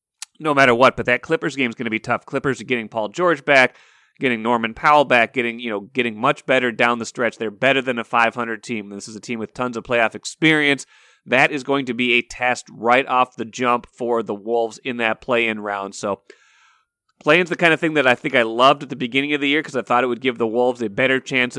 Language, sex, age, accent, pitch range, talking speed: English, male, 30-49, American, 115-135 Hz, 260 wpm